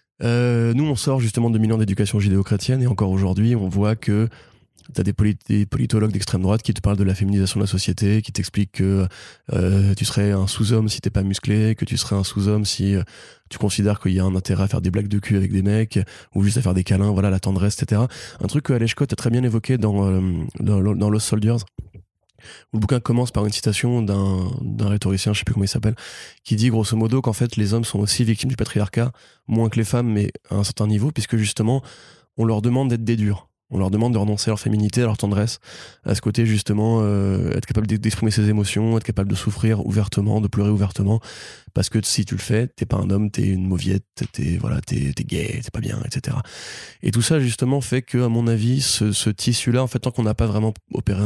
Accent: French